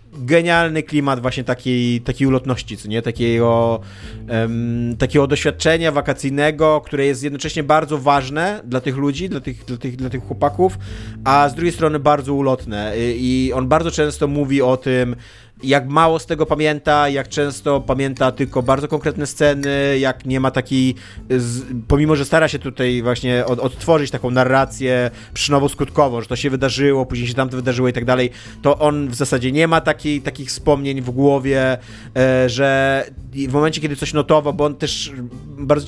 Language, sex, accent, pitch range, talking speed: Polish, male, native, 125-145 Hz, 160 wpm